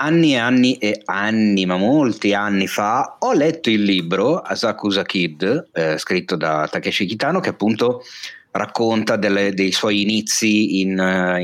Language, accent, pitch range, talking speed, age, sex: Italian, native, 90-105 Hz, 145 wpm, 30-49, male